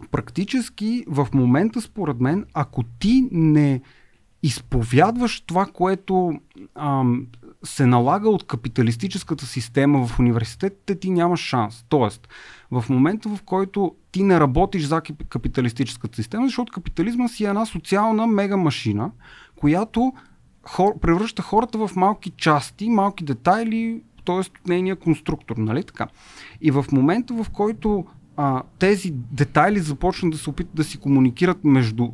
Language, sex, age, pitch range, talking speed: Bulgarian, male, 30-49, 135-205 Hz, 130 wpm